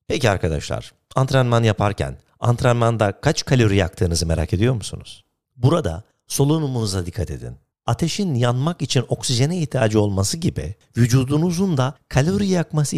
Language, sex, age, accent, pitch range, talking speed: Turkish, male, 50-69, native, 100-150 Hz, 120 wpm